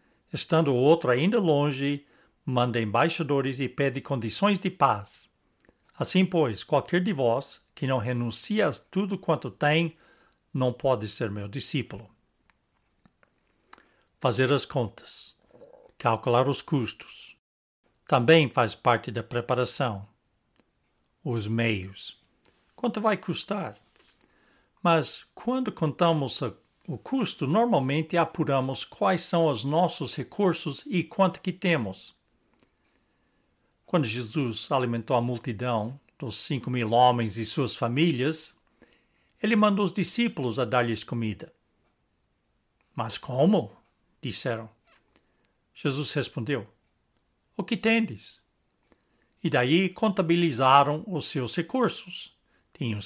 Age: 60-79